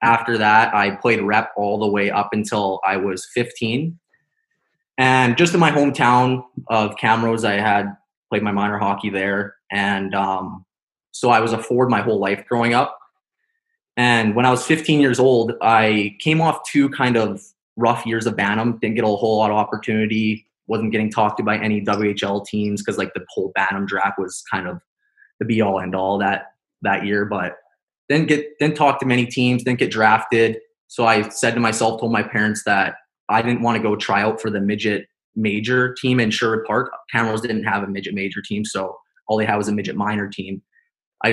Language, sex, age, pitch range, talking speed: English, male, 20-39, 105-120 Hz, 205 wpm